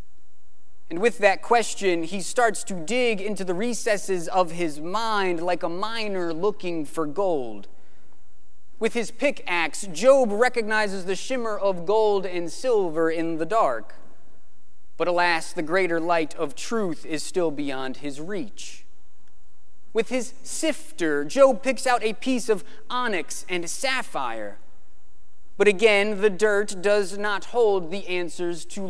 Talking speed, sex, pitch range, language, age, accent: 140 wpm, male, 155-230 Hz, English, 30-49, American